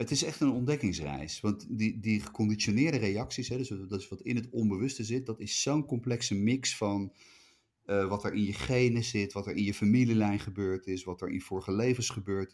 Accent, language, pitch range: Dutch, Dutch, 95-120 Hz